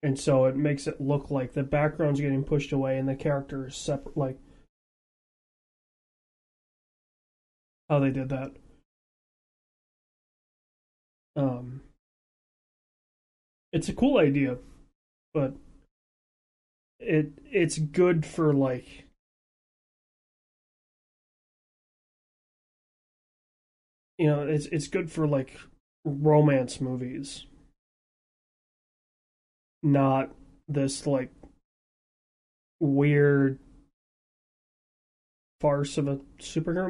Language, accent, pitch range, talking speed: English, American, 135-150 Hz, 80 wpm